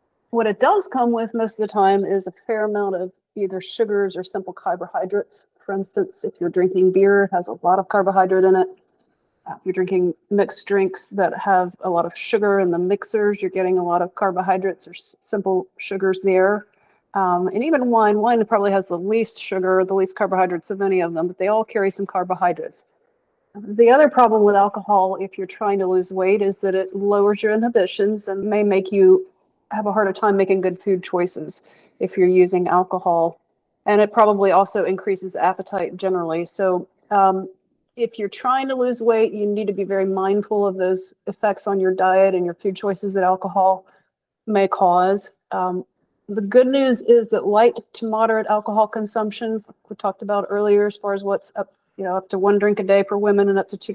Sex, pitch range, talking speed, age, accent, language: female, 190-215 Hz, 200 wpm, 40-59, American, English